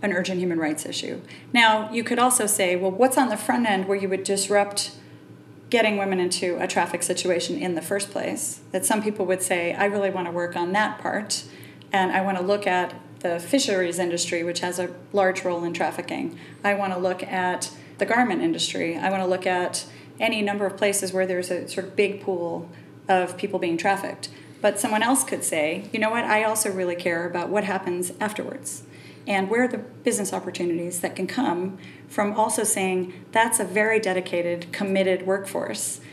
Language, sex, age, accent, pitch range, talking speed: English, female, 30-49, American, 180-210 Hz, 195 wpm